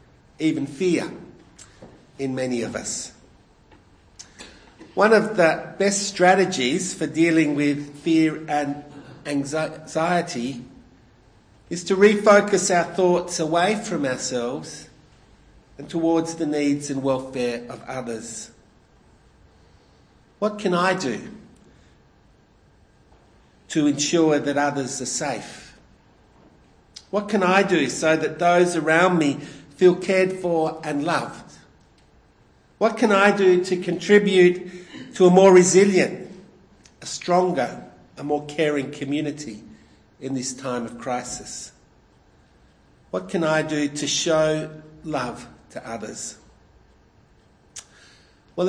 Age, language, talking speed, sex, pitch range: 50-69, English, 110 wpm, male, 140-180 Hz